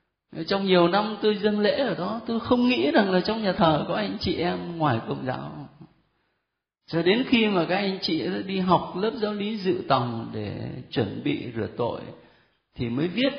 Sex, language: male, Vietnamese